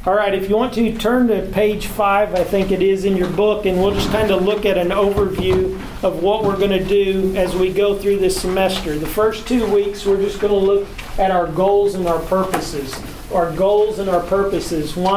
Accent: American